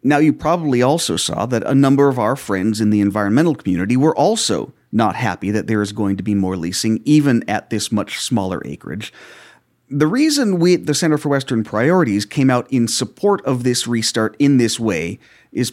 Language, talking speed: English, 200 wpm